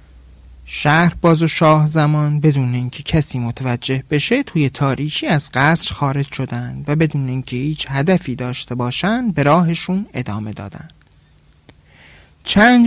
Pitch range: 130-170 Hz